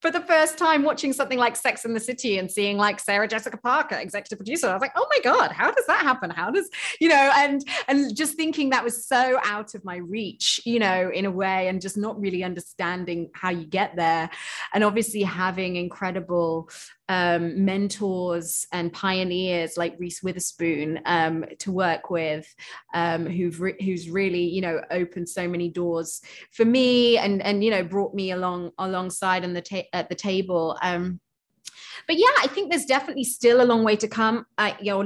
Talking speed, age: 200 wpm, 20-39